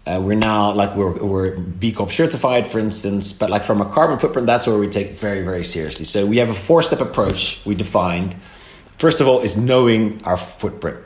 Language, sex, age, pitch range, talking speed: English, male, 30-49, 90-115 Hz, 205 wpm